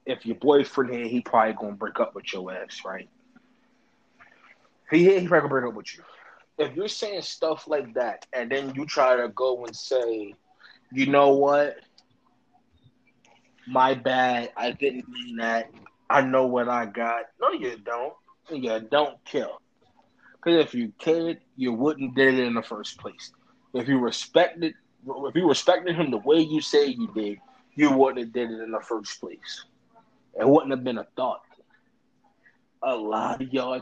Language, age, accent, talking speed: English, 20-39, American, 175 wpm